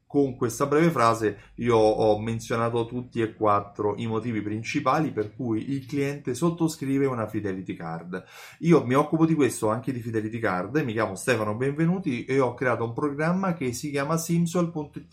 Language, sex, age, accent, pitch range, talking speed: Italian, male, 30-49, native, 110-150 Hz, 170 wpm